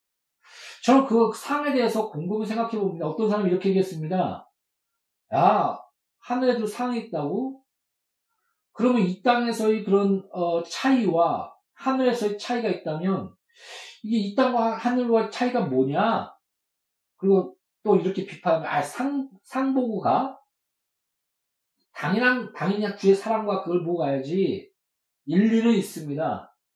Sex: male